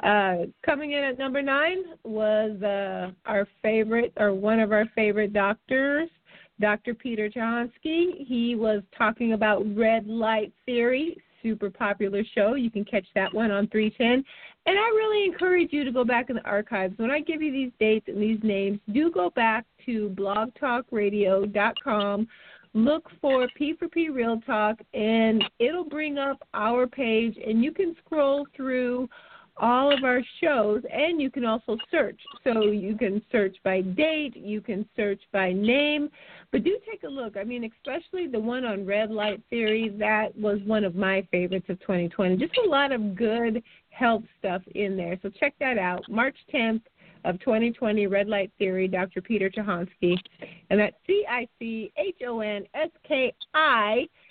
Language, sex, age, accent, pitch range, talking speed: English, female, 40-59, American, 205-265 Hz, 160 wpm